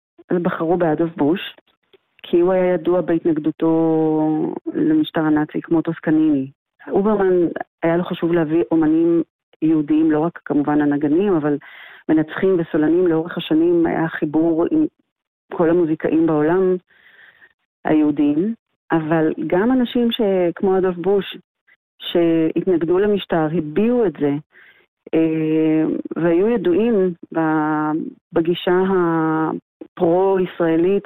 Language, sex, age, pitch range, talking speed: Hebrew, female, 40-59, 160-195 Hz, 105 wpm